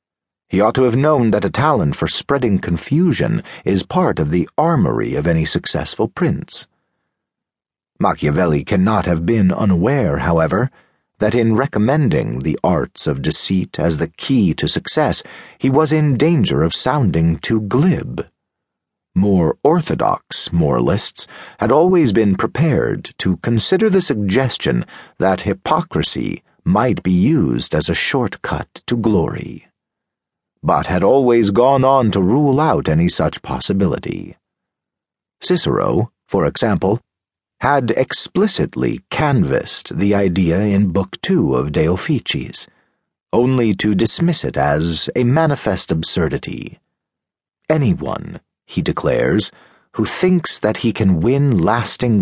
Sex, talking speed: male, 125 wpm